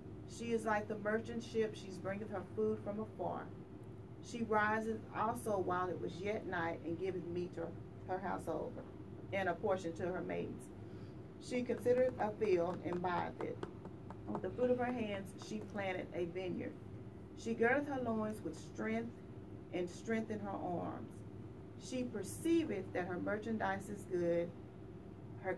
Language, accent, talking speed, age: English, American, 155 wpm, 40-59